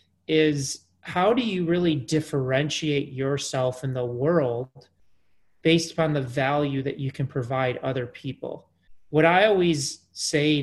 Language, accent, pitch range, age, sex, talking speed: English, American, 135-165 Hz, 30-49, male, 135 wpm